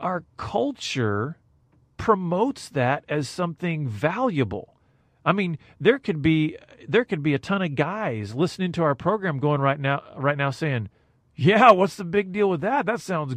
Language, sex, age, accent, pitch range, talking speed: English, male, 40-59, American, 125-175 Hz, 170 wpm